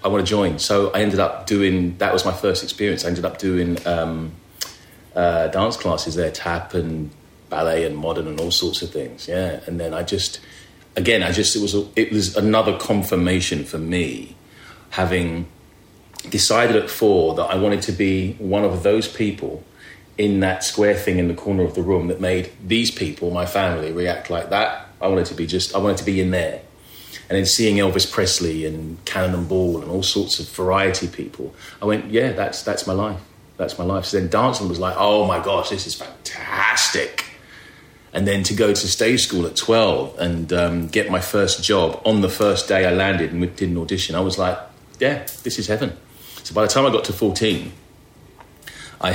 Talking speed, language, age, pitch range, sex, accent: 205 wpm, English, 30-49, 85-100 Hz, male, British